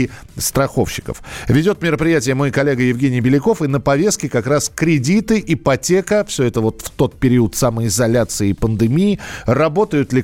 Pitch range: 120-160 Hz